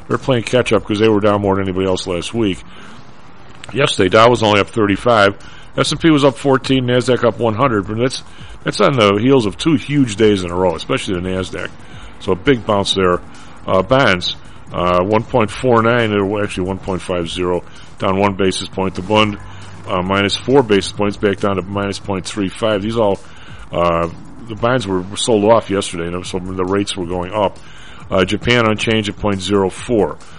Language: English